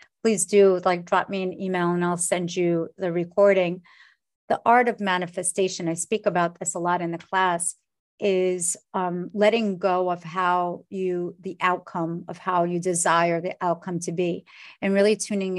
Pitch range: 175-200 Hz